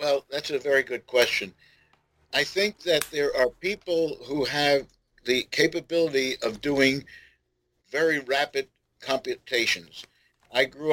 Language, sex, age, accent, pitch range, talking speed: English, male, 60-79, American, 130-175 Hz, 125 wpm